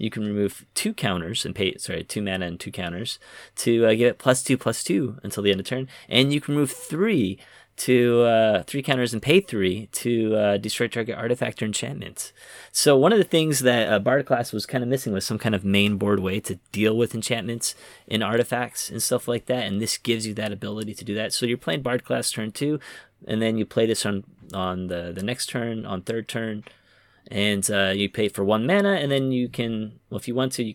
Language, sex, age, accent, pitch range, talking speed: English, male, 30-49, American, 100-125 Hz, 240 wpm